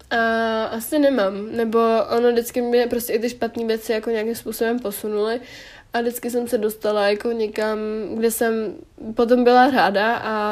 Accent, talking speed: native, 165 wpm